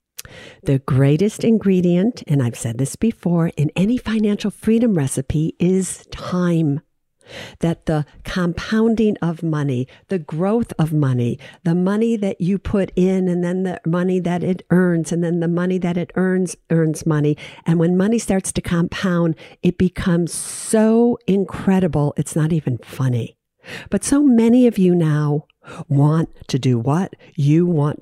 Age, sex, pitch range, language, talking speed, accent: 60-79, female, 145-195 Hz, English, 155 wpm, American